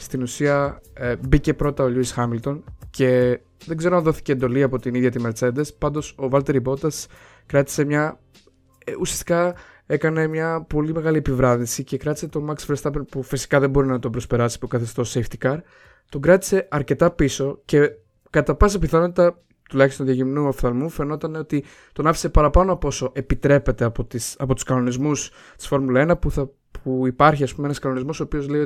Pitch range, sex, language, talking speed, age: 125-150 Hz, male, Greek, 175 wpm, 20-39